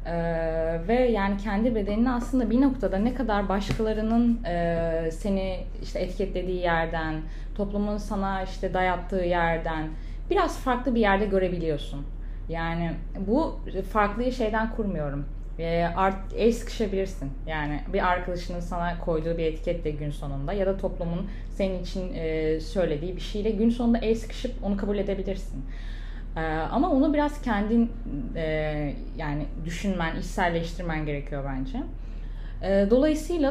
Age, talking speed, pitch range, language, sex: 10-29, 125 wpm, 165-215 Hz, Turkish, female